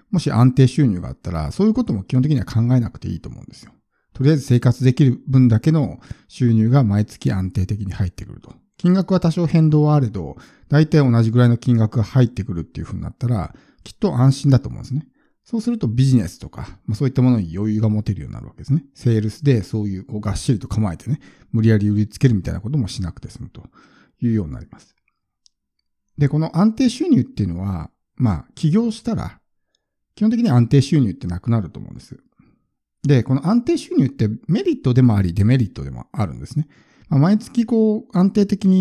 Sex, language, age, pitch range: male, Japanese, 50-69, 110-155 Hz